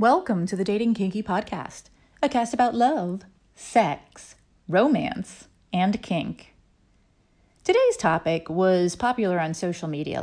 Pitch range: 160-235 Hz